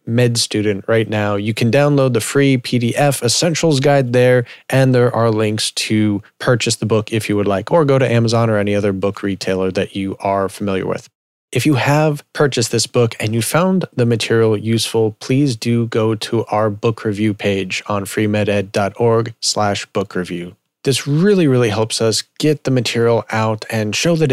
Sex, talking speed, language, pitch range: male, 185 wpm, English, 105-130 Hz